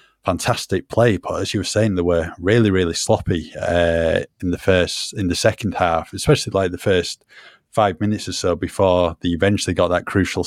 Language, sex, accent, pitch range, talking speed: English, male, British, 90-100 Hz, 195 wpm